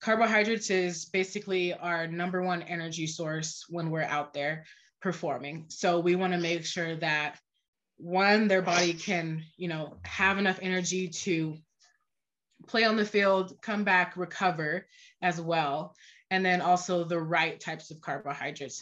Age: 20-39